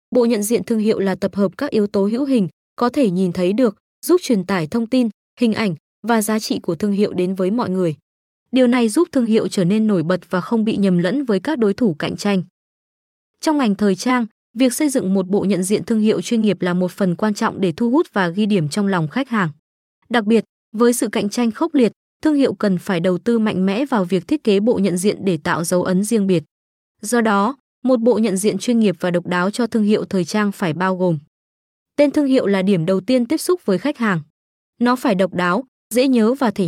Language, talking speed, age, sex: Vietnamese, 250 wpm, 20-39, female